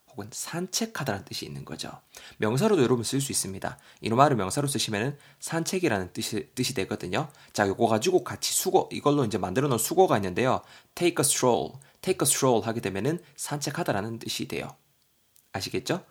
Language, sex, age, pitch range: Korean, male, 20-39, 115-155 Hz